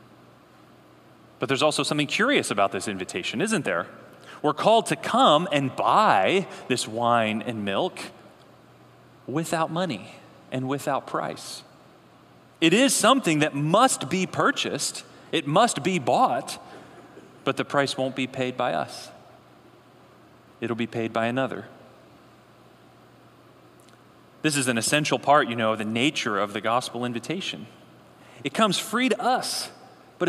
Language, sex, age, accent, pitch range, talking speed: English, male, 30-49, American, 115-185 Hz, 135 wpm